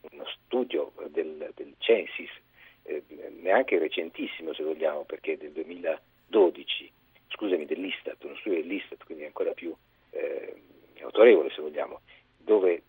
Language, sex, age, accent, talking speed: Italian, male, 50-69, native, 120 wpm